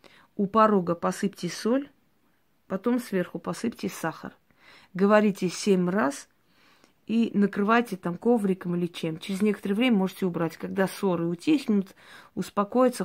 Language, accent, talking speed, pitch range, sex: Russian, native, 120 wpm, 175-210 Hz, female